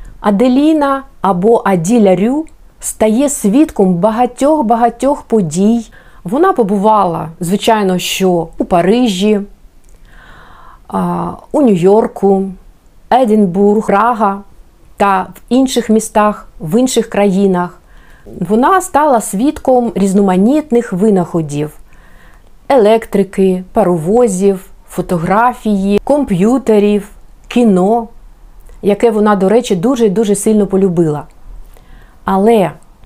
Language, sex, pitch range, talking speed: Ukrainian, female, 190-240 Hz, 80 wpm